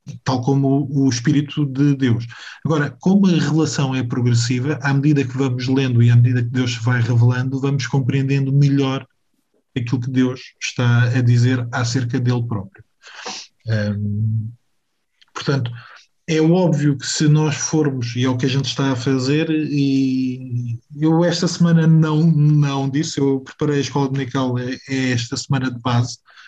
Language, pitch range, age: Portuguese, 125-150 Hz, 20-39